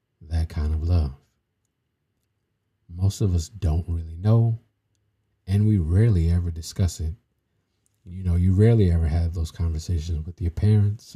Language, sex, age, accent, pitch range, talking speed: English, male, 50-69, American, 85-110 Hz, 145 wpm